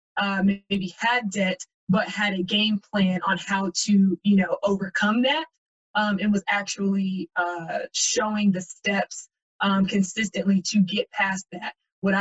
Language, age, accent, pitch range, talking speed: English, 20-39, American, 190-210 Hz, 150 wpm